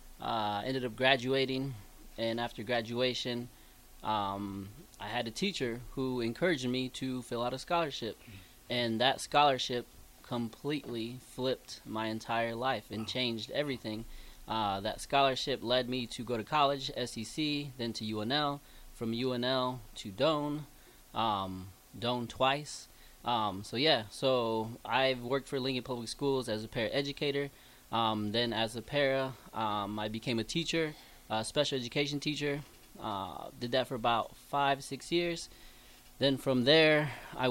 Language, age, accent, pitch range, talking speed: English, 20-39, American, 115-140 Hz, 145 wpm